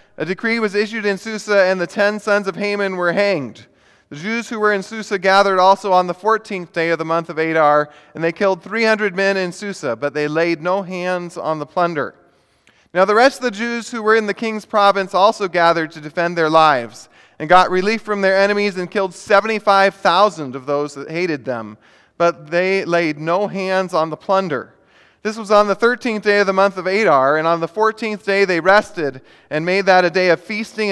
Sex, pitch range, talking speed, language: male, 160-205 Hz, 220 wpm, English